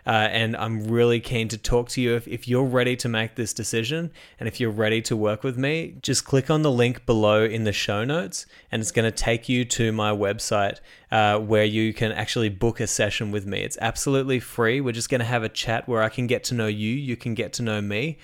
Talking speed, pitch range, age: 255 wpm, 110-130 Hz, 20-39